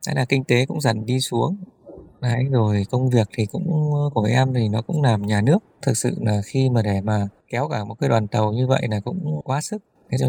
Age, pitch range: 20-39, 110-140 Hz